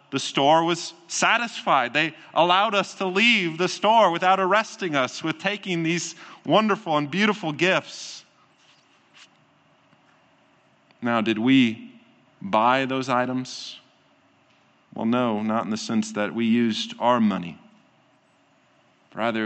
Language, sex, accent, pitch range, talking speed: English, male, American, 115-145 Hz, 120 wpm